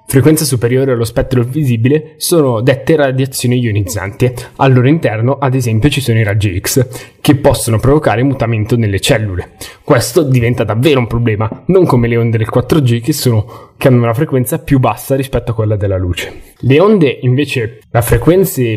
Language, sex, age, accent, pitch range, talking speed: Italian, male, 10-29, native, 115-140 Hz, 170 wpm